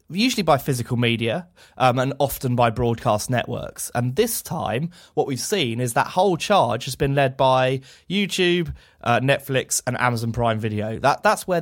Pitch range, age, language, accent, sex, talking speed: 115-145 Hz, 20-39, English, British, male, 170 wpm